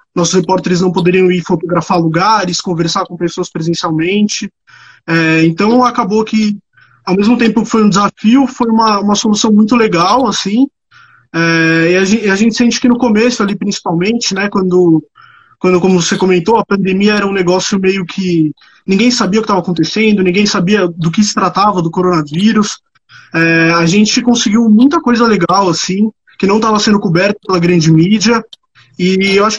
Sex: male